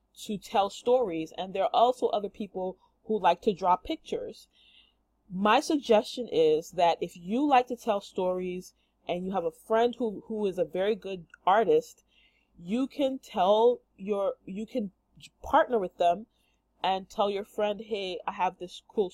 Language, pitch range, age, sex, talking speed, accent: English, 185-250 Hz, 30-49, female, 170 wpm, American